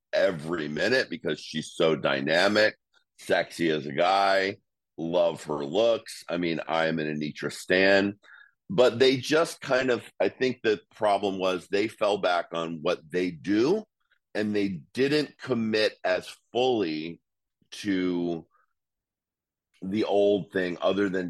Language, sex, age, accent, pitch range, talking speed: English, male, 50-69, American, 85-120 Hz, 135 wpm